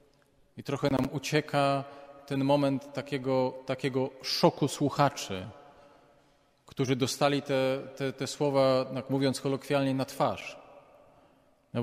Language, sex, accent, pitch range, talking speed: Polish, male, native, 125-145 Hz, 105 wpm